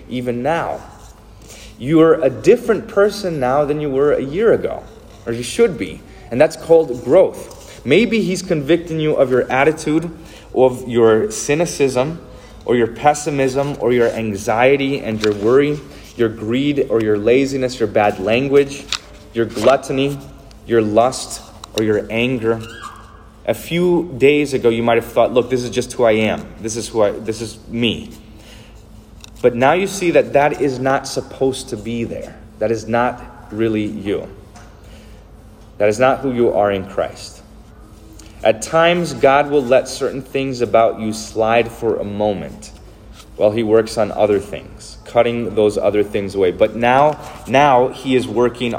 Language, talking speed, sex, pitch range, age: English, 160 wpm, male, 110-135 Hz, 30-49